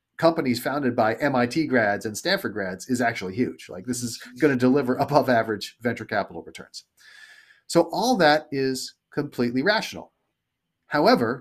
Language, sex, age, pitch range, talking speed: English, male, 40-59, 110-150 Hz, 145 wpm